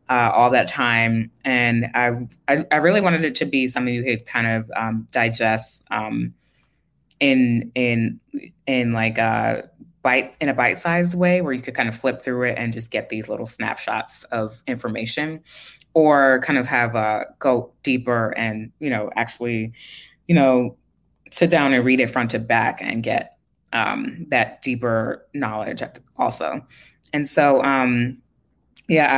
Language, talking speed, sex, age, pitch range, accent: English, 165 wpm, female, 20-39, 115-135 Hz, American